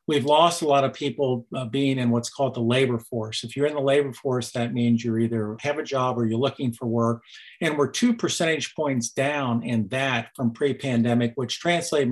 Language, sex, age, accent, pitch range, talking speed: English, male, 50-69, American, 120-145 Hz, 215 wpm